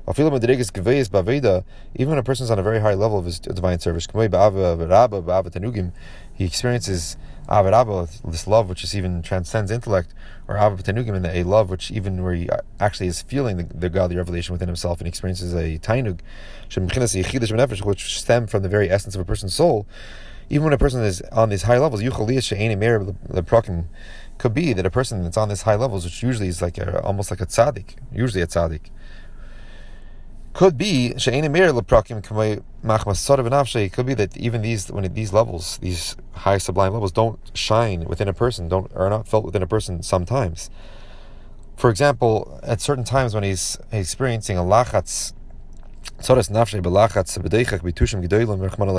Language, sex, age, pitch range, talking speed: English, male, 30-49, 90-115 Hz, 150 wpm